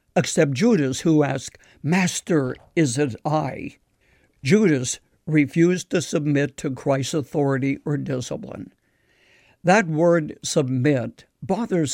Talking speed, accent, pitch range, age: 105 wpm, American, 135-165 Hz, 60-79